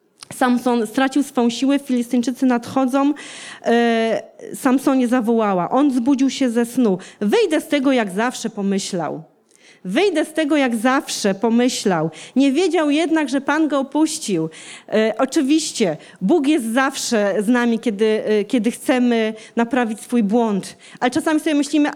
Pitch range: 235-310 Hz